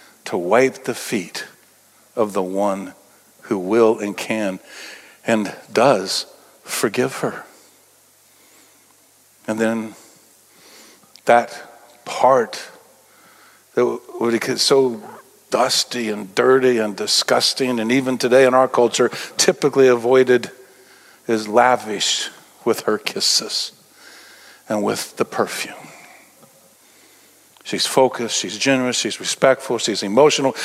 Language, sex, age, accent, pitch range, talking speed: English, male, 60-79, American, 120-155 Hz, 105 wpm